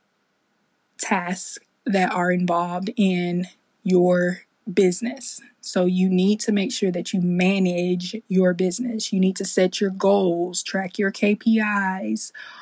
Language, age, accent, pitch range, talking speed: English, 20-39, American, 185-235 Hz, 130 wpm